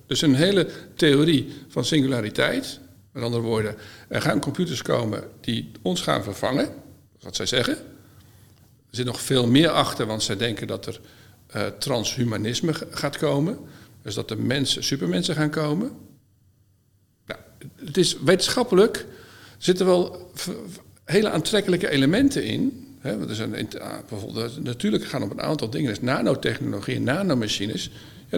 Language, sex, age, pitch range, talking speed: Dutch, male, 50-69, 115-160 Hz, 145 wpm